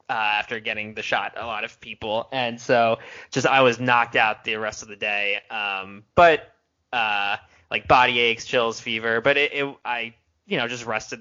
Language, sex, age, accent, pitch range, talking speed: English, male, 20-39, American, 110-125 Hz, 200 wpm